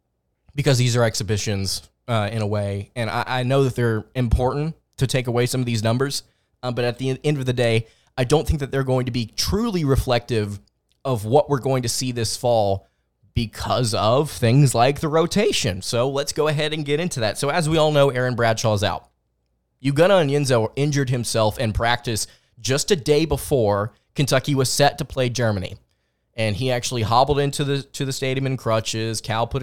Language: English